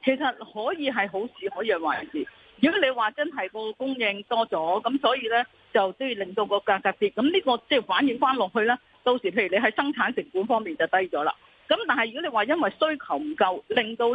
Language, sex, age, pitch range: Chinese, female, 40-59, 200-275 Hz